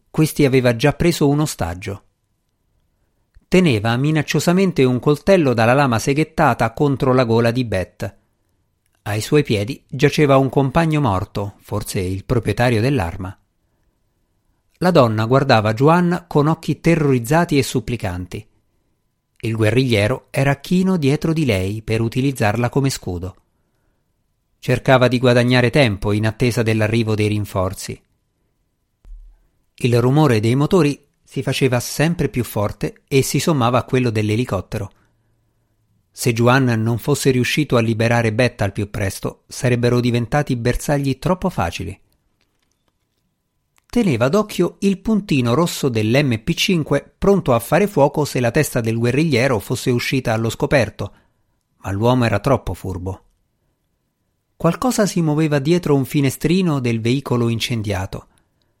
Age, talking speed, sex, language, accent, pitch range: 50-69, 125 wpm, male, Italian, native, 105-145 Hz